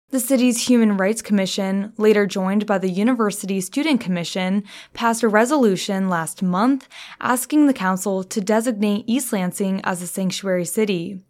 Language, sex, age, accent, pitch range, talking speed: English, female, 20-39, American, 195-245 Hz, 150 wpm